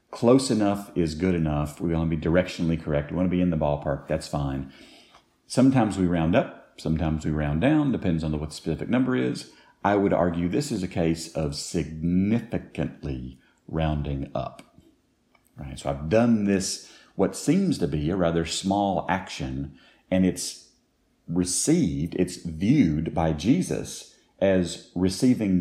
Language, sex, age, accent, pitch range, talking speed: English, male, 50-69, American, 75-95 Hz, 155 wpm